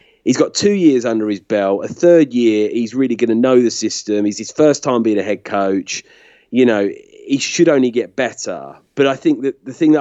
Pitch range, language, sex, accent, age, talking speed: 105-130 Hz, English, male, British, 30-49, 235 wpm